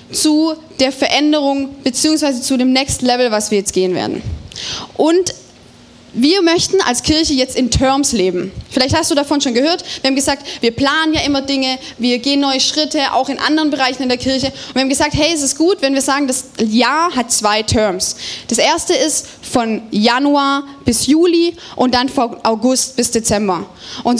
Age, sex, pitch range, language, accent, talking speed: 20-39, female, 245-305 Hz, German, German, 195 wpm